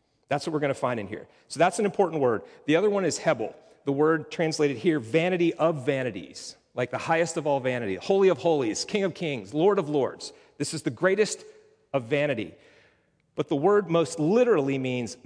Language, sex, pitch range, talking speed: English, male, 130-175 Hz, 205 wpm